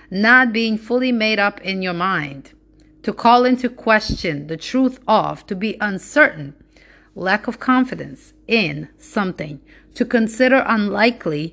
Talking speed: 135 wpm